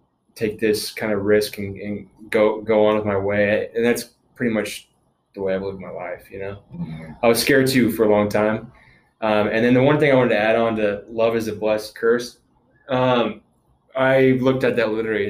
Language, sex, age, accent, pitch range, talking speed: English, male, 20-39, American, 105-120 Hz, 220 wpm